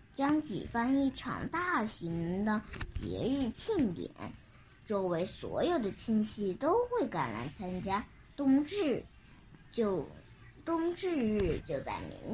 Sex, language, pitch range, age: male, Chinese, 190-285 Hz, 10-29